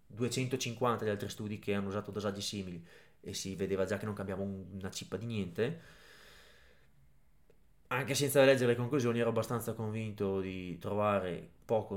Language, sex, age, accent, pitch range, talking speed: Italian, male, 20-39, native, 100-125 Hz, 155 wpm